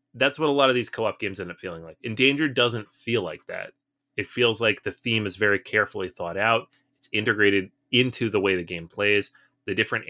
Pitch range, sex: 95-125 Hz, male